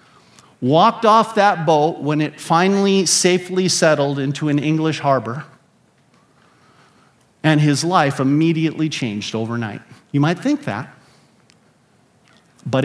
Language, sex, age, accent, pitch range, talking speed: English, male, 40-59, American, 140-185 Hz, 110 wpm